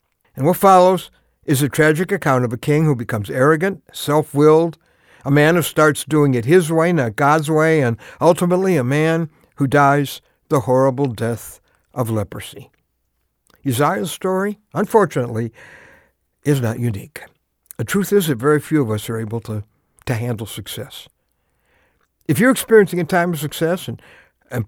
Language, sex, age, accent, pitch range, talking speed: English, male, 60-79, American, 125-175 Hz, 160 wpm